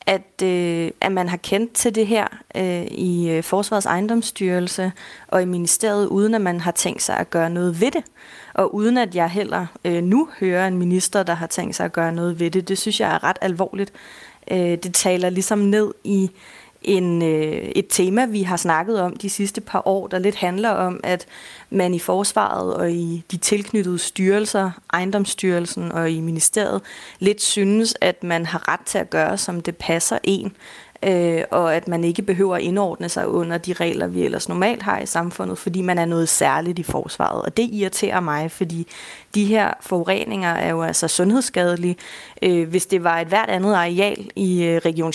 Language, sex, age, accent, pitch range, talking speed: Danish, female, 30-49, native, 170-200 Hz, 190 wpm